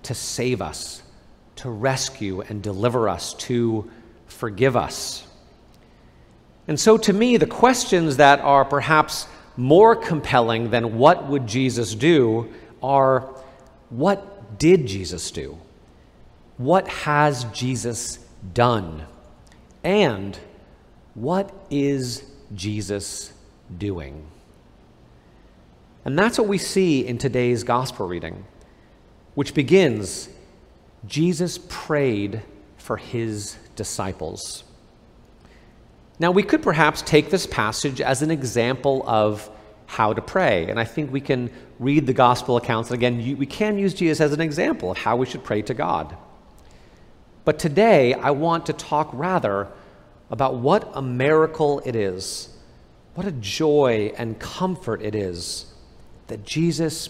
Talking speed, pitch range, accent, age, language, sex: 125 wpm, 105-155 Hz, American, 40-59, English, male